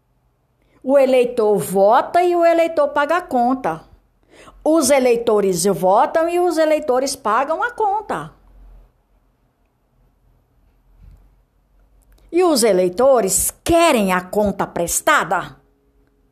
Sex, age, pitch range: female, 60-79, 195-310 Hz